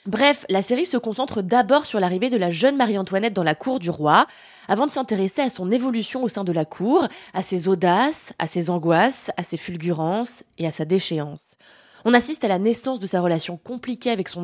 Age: 20-39